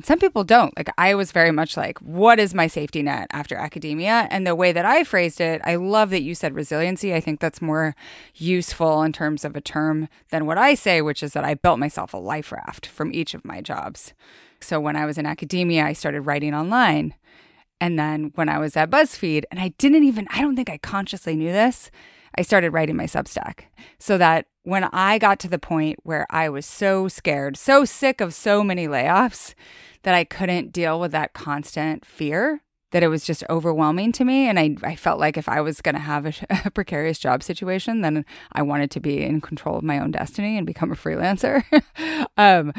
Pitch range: 155-205 Hz